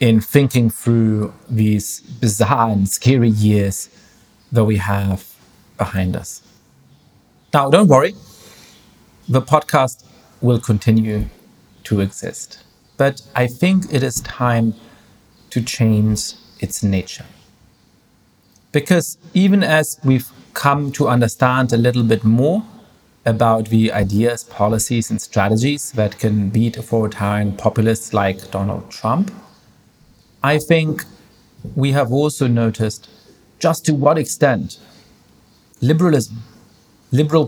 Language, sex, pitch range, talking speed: English, male, 110-140 Hz, 110 wpm